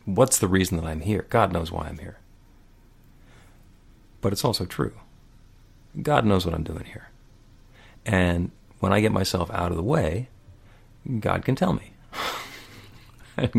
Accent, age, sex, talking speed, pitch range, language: American, 50-69, male, 155 wpm, 95-120 Hz, English